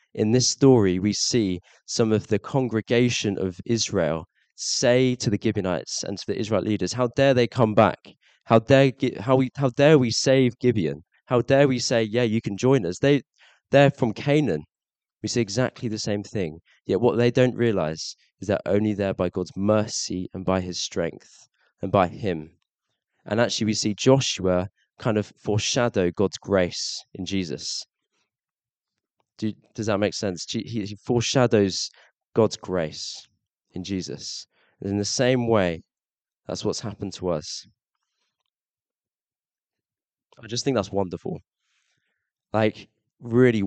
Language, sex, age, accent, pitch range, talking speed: English, male, 20-39, British, 100-120 Hz, 155 wpm